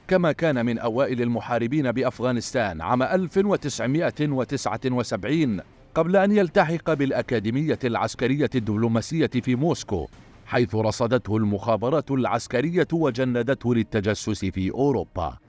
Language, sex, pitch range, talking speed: Arabic, male, 115-150 Hz, 95 wpm